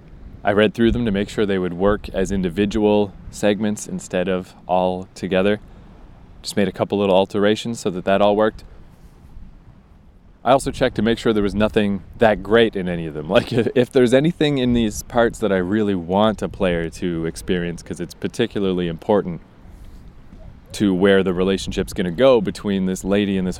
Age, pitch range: 20-39, 90-110 Hz